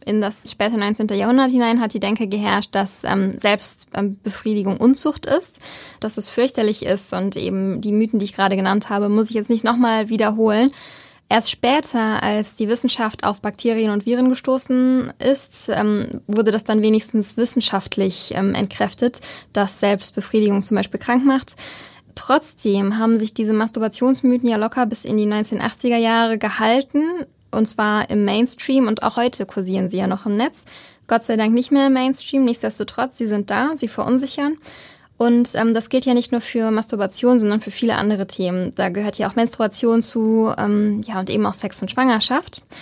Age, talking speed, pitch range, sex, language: 10-29, 175 wpm, 210-245 Hz, female, German